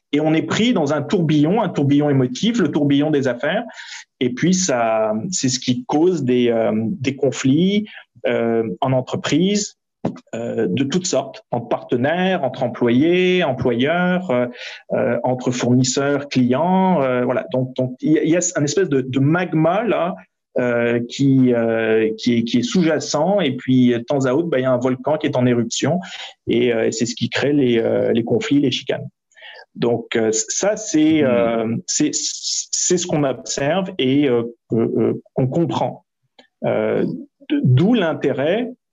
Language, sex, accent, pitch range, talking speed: French, male, French, 125-170 Hz, 170 wpm